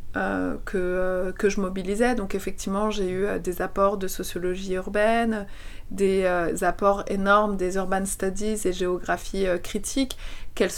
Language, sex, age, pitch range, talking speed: French, female, 30-49, 185-215 Hz, 155 wpm